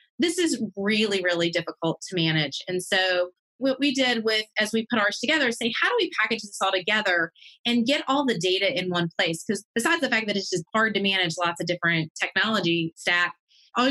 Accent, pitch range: American, 185-225 Hz